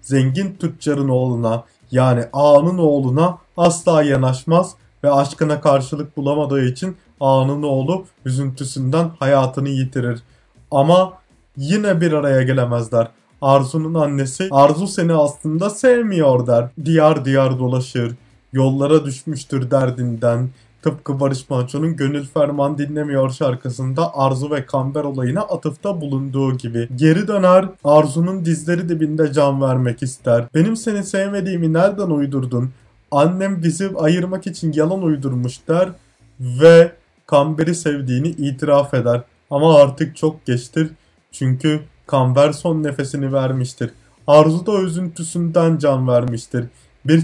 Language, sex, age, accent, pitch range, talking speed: Turkish, male, 30-49, native, 130-165 Hz, 115 wpm